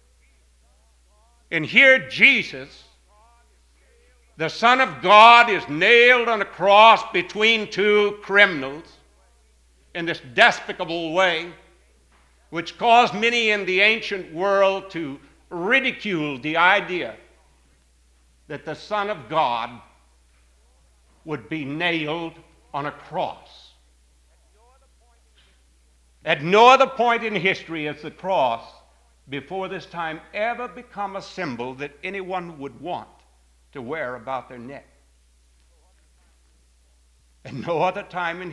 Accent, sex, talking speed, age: American, male, 110 wpm, 60-79